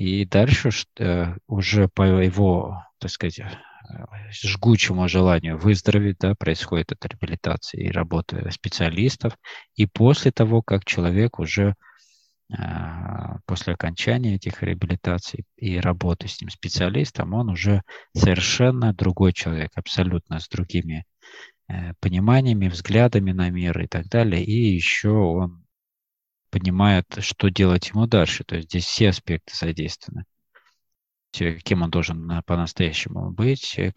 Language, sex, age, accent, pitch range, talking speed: Russian, male, 20-39, native, 85-110 Hz, 115 wpm